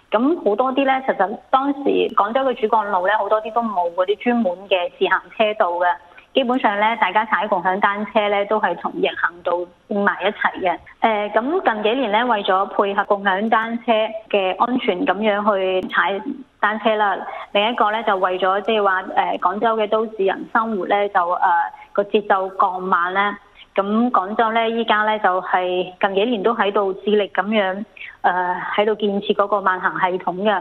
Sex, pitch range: female, 195-225 Hz